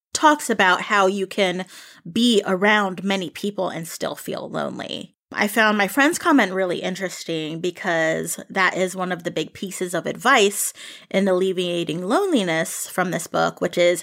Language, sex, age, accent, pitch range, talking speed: English, female, 20-39, American, 180-215 Hz, 165 wpm